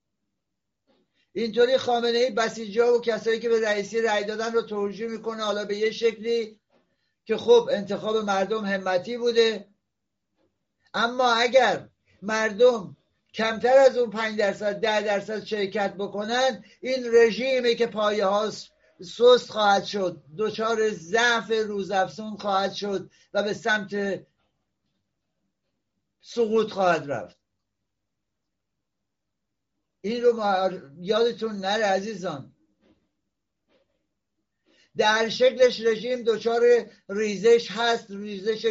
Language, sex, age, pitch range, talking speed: Persian, male, 60-79, 200-230 Hz, 100 wpm